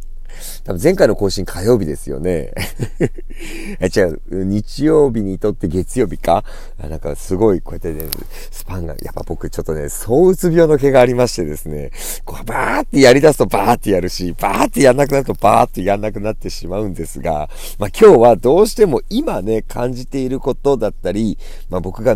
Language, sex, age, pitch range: Japanese, male, 40-59, 90-140 Hz